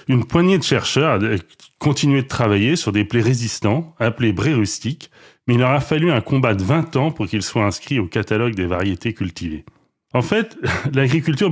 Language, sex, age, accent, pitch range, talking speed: French, male, 30-49, French, 110-140 Hz, 195 wpm